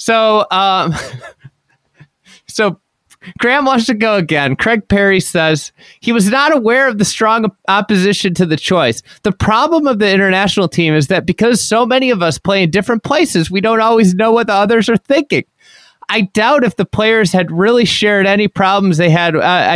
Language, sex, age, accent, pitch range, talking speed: English, male, 30-49, American, 155-215 Hz, 185 wpm